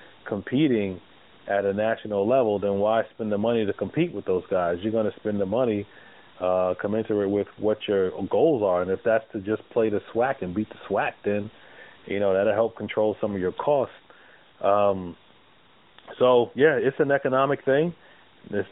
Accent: American